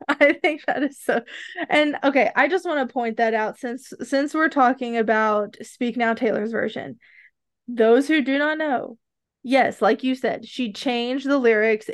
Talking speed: 180 wpm